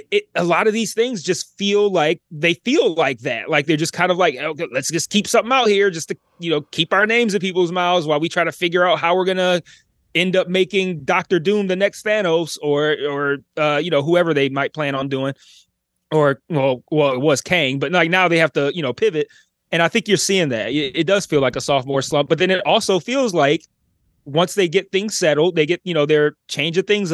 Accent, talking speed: American, 245 wpm